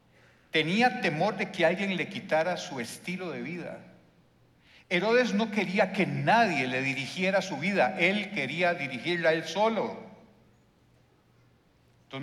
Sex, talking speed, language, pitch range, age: male, 130 wpm, Spanish, 125-175 Hz, 60-79